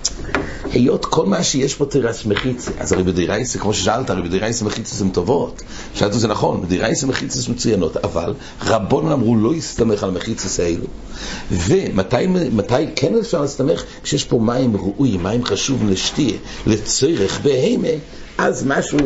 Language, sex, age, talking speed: English, male, 60-79, 150 wpm